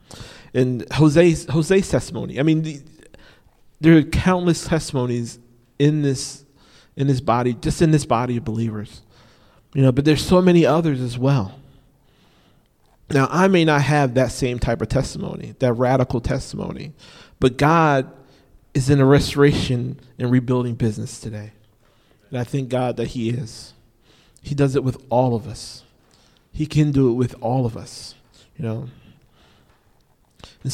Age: 40-59